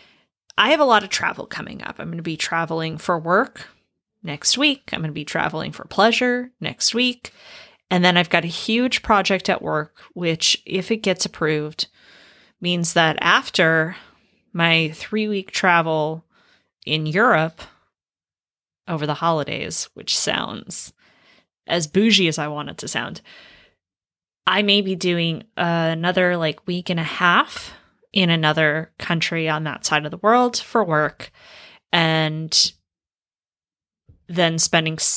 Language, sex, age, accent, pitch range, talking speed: English, female, 20-39, American, 155-195 Hz, 150 wpm